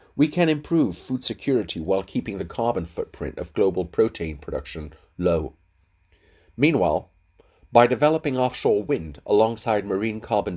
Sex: male